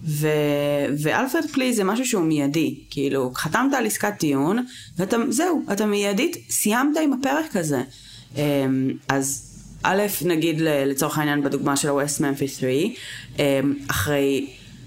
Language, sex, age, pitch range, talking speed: Hebrew, female, 30-49, 140-195 Hz, 120 wpm